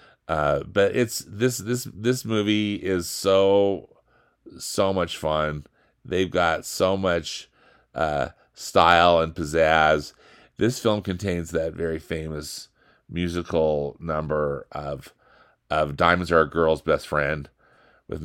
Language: English